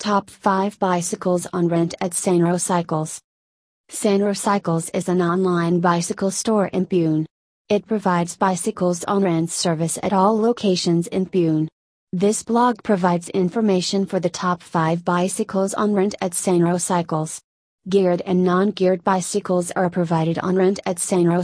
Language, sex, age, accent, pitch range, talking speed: English, female, 30-49, American, 175-200 Hz, 150 wpm